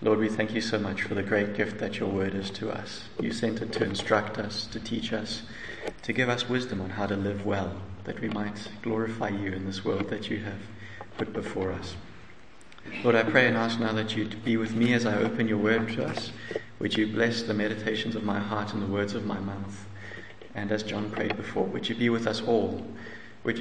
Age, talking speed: 30-49, 235 wpm